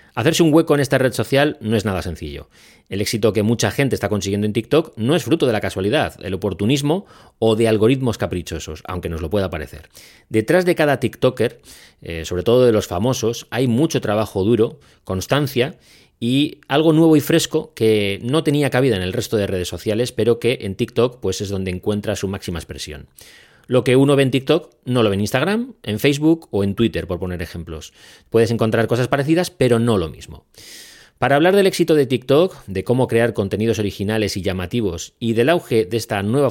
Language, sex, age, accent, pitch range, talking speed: Spanish, male, 30-49, Spanish, 100-135 Hz, 200 wpm